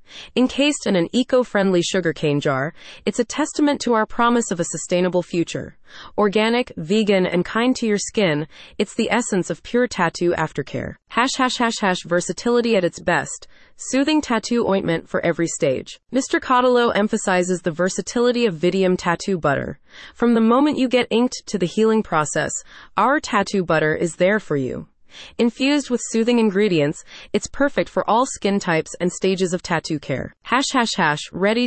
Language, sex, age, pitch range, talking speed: English, female, 30-49, 175-235 Hz, 170 wpm